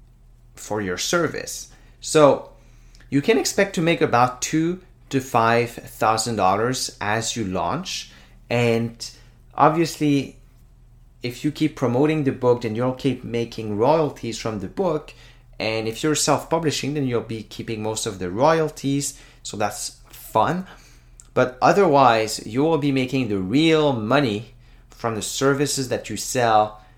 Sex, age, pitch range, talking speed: male, 30-49, 105-135 Hz, 140 wpm